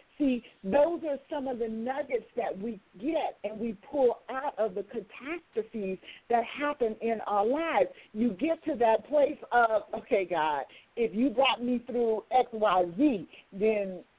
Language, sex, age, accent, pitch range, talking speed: English, female, 50-69, American, 200-260 Hz, 165 wpm